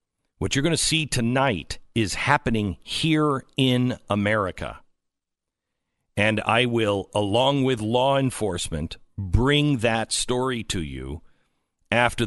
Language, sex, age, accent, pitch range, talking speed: English, male, 50-69, American, 100-160 Hz, 115 wpm